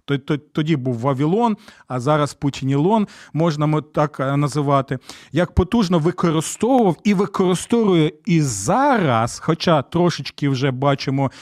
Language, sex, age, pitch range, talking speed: Ukrainian, male, 40-59, 145-180 Hz, 105 wpm